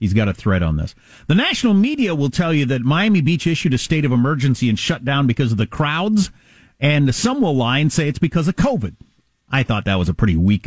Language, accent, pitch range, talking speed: English, American, 110-185 Hz, 245 wpm